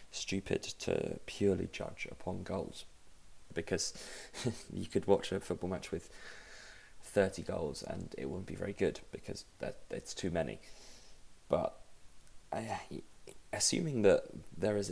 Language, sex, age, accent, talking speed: English, male, 20-39, British, 135 wpm